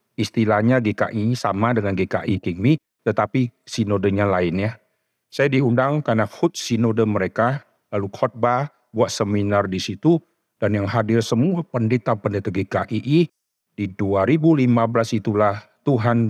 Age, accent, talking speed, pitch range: 50-69, native, 115 wpm, 105-130 Hz